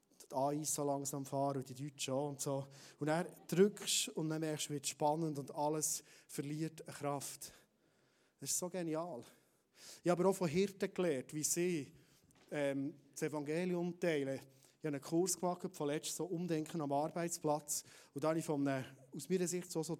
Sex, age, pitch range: male, 30-49, 150-175 Hz